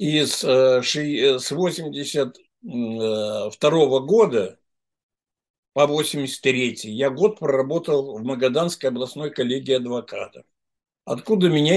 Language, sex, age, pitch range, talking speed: English, male, 60-79, 135-185 Hz, 85 wpm